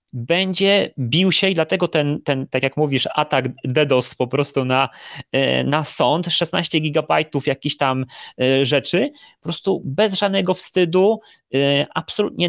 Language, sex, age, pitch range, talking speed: Polish, male, 30-49, 130-170 Hz, 135 wpm